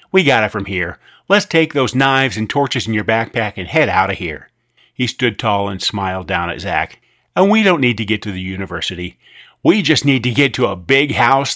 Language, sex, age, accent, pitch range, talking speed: English, male, 40-59, American, 105-145 Hz, 235 wpm